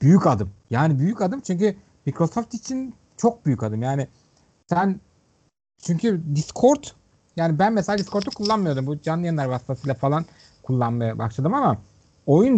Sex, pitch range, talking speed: male, 135-205 Hz, 140 wpm